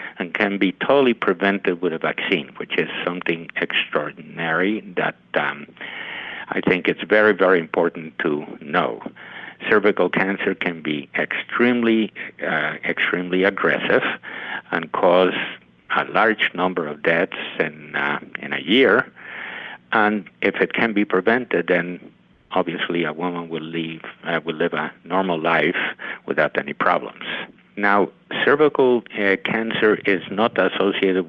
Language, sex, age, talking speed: English, male, 60-79, 135 wpm